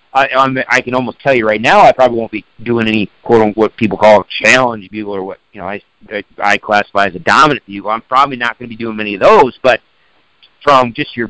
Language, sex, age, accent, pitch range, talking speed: English, male, 50-69, American, 115-170 Hz, 260 wpm